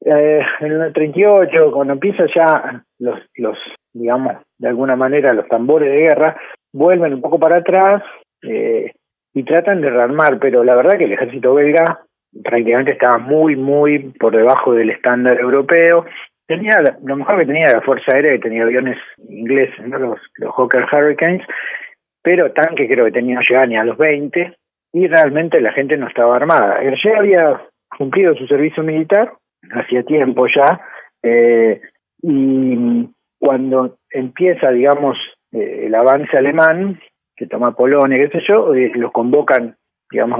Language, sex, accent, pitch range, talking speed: Spanish, male, Argentinian, 125-175 Hz, 155 wpm